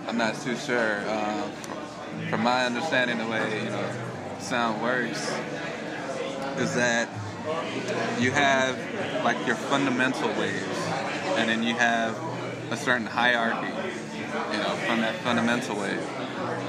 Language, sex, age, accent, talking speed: English, male, 20-39, American, 120 wpm